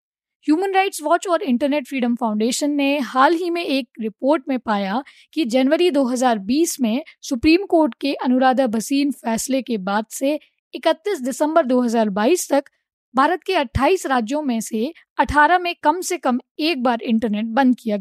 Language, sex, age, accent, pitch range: Hindi, female, 20-39, native, 240-310 Hz